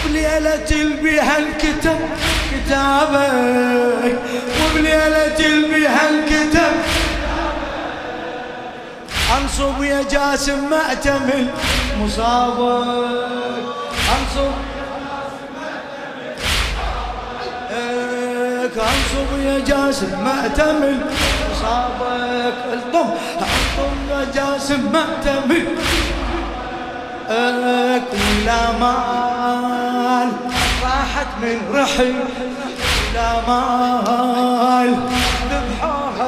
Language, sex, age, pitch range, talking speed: Arabic, male, 30-49, 245-280 Hz, 60 wpm